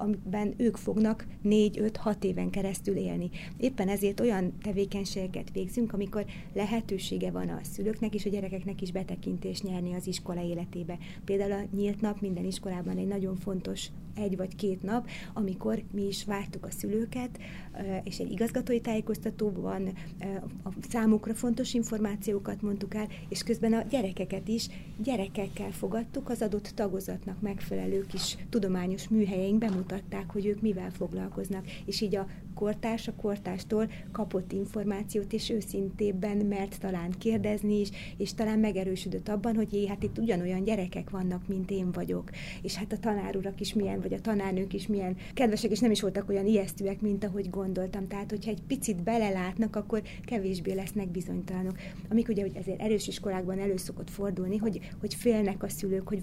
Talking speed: 155 wpm